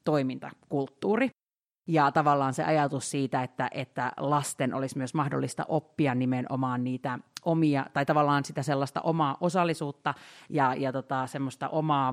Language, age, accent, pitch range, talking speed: Finnish, 30-49, native, 140-165 Hz, 135 wpm